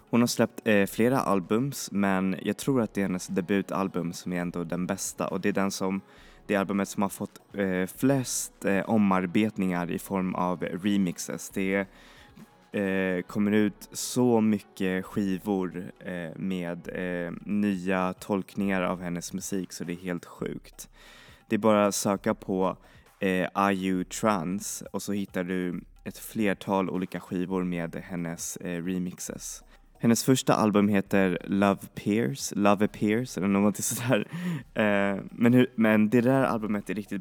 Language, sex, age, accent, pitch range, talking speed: Swedish, male, 20-39, native, 95-105 Hz, 155 wpm